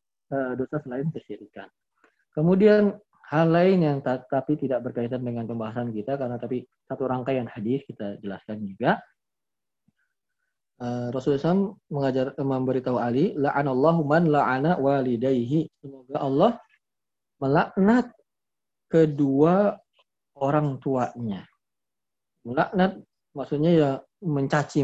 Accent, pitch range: native, 125-160 Hz